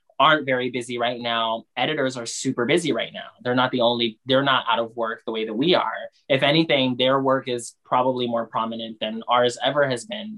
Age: 20-39